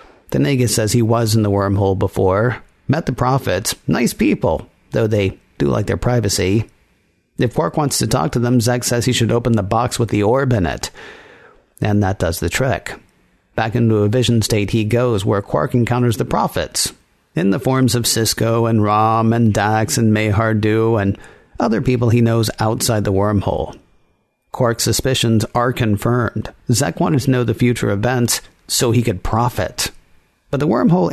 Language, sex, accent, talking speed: English, male, American, 180 wpm